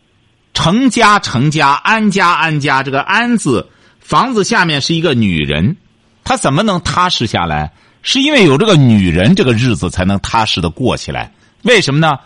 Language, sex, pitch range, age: Chinese, male, 115-180 Hz, 50-69